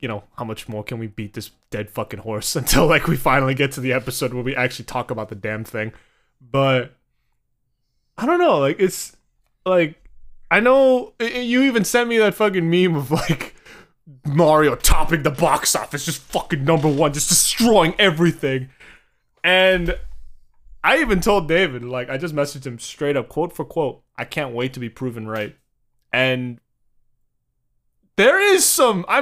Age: 20-39